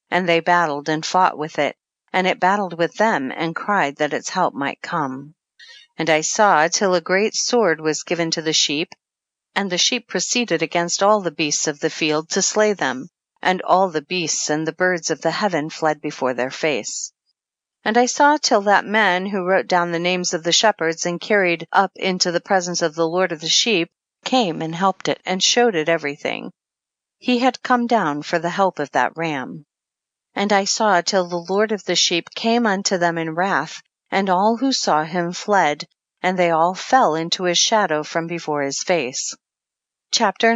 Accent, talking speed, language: American, 200 wpm, English